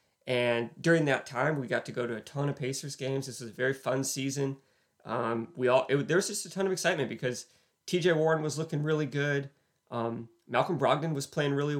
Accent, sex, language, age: American, male, English, 30-49